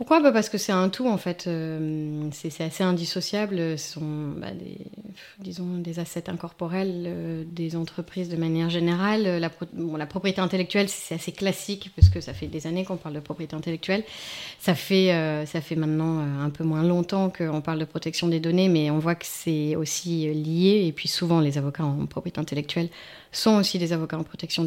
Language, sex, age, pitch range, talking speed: French, female, 30-49, 155-180 Hz, 190 wpm